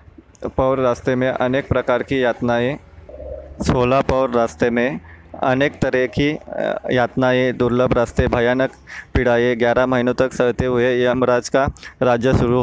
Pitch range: 120-135 Hz